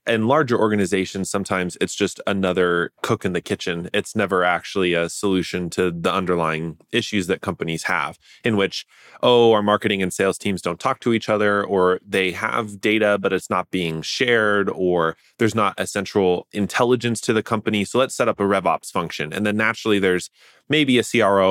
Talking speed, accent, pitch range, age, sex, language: 190 wpm, American, 90-115 Hz, 20-39, male, English